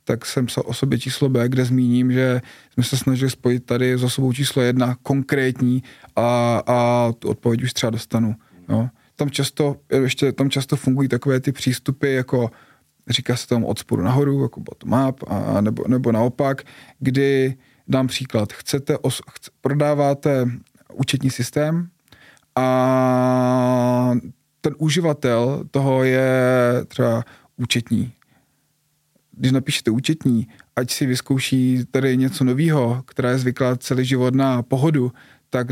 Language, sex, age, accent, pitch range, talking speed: Czech, male, 20-39, native, 125-140 Hz, 140 wpm